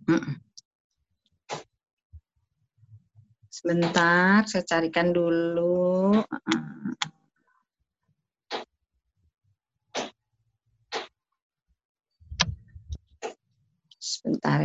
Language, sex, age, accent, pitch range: Indonesian, female, 30-49, native, 180-255 Hz